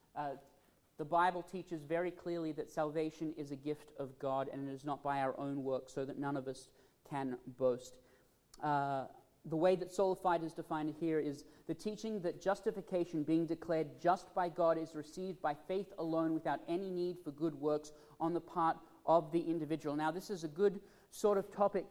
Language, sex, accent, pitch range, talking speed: English, male, Australian, 150-175 Hz, 195 wpm